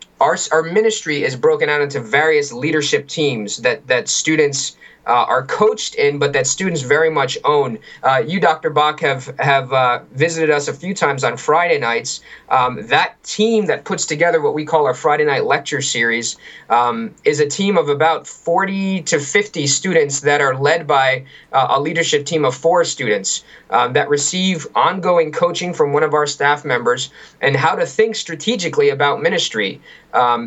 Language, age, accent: English, 20-39, American